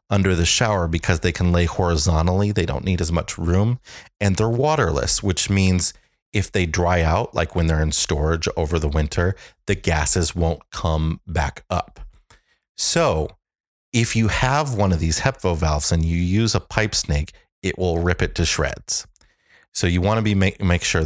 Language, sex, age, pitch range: English, male, 30-49, 80-100 Hz